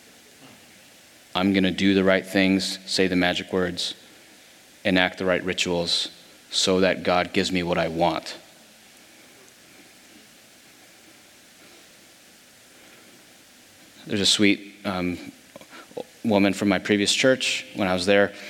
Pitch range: 95-105 Hz